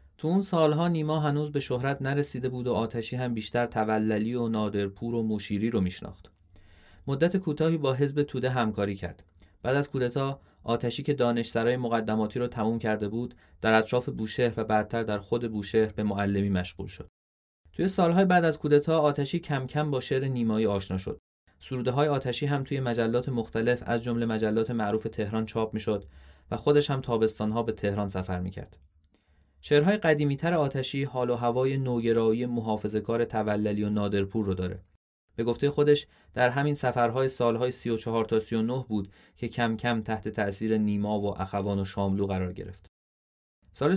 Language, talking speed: Persian, 165 wpm